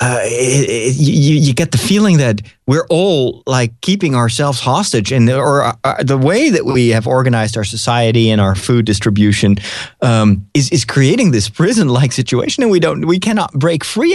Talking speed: 195 wpm